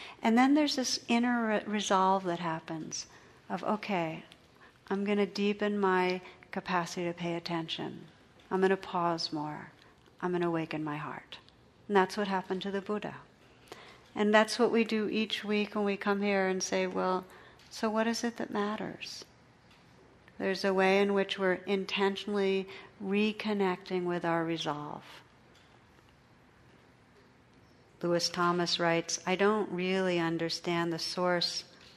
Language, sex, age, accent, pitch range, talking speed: English, female, 60-79, American, 175-205 Hz, 145 wpm